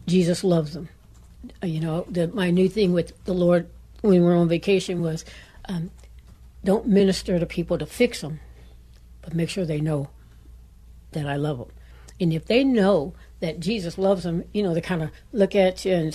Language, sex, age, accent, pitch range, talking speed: English, female, 60-79, American, 160-190 Hz, 195 wpm